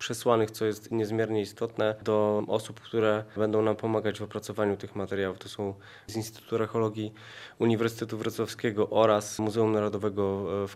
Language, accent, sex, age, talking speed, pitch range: Polish, native, male, 20-39, 145 wpm, 105-115 Hz